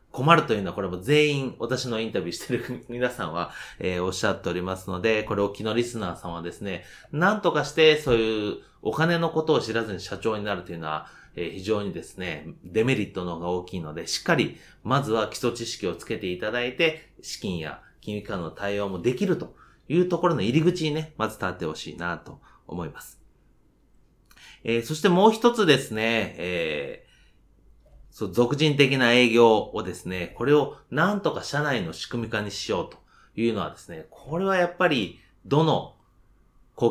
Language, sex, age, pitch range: Japanese, male, 30-49, 100-160 Hz